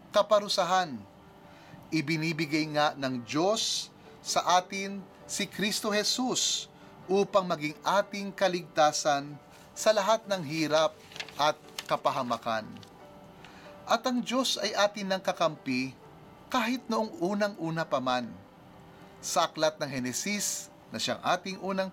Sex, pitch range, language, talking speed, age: male, 150-200 Hz, Filipino, 105 wpm, 30-49